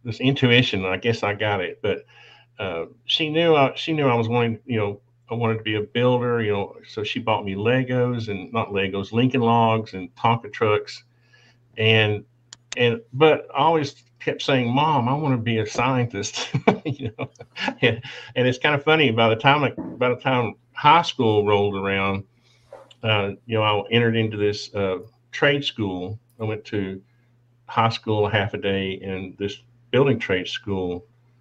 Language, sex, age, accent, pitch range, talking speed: English, male, 50-69, American, 105-125 Hz, 175 wpm